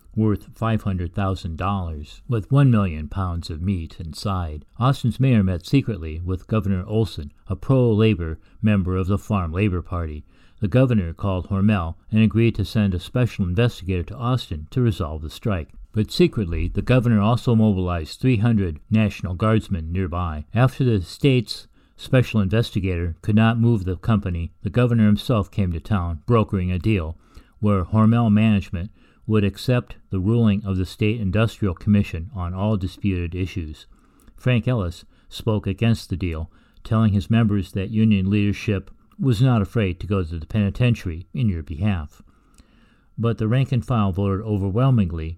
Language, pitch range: English, 90-110 Hz